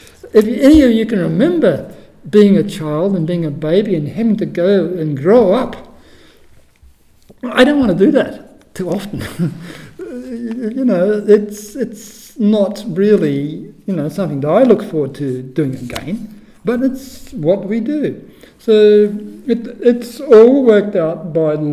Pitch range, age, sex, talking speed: 160-225 Hz, 60-79, male, 155 wpm